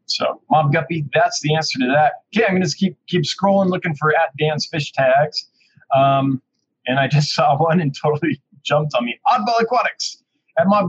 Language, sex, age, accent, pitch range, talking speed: English, male, 20-39, American, 140-205 Hz, 200 wpm